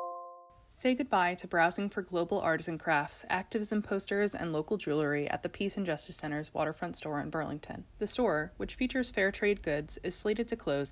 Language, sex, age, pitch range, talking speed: English, female, 20-39, 160-210 Hz, 185 wpm